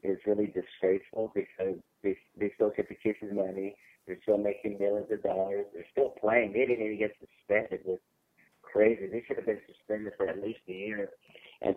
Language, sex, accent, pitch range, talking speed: English, male, American, 95-110 Hz, 195 wpm